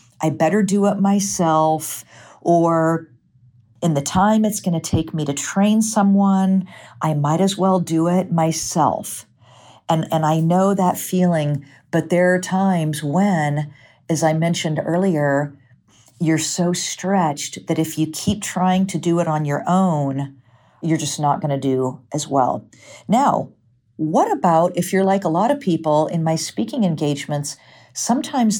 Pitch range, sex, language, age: 145-185 Hz, female, English, 50-69